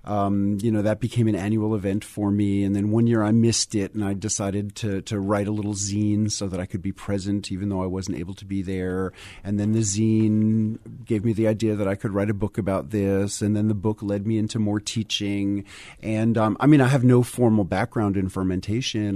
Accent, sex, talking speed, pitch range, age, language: American, male, 240 wpm, 95-115 Hz, 40-59, English